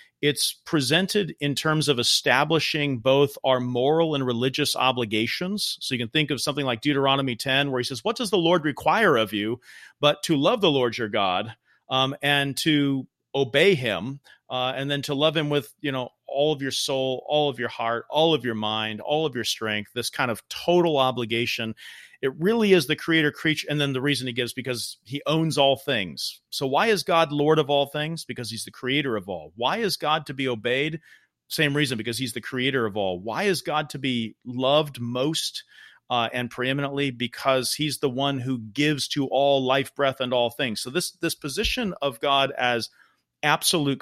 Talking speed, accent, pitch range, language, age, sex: 205 wpm, American, 125-155 Hz, English, 40-59, male